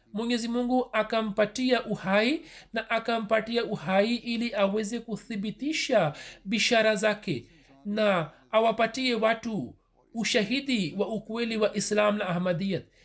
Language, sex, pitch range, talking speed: Swahili, male, 200-245 Hz, 100 wpm